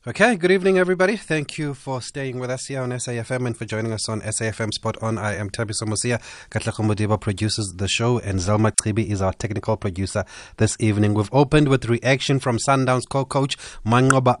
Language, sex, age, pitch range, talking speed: English, male, 30-49, 100-125 Hz, 195 wpm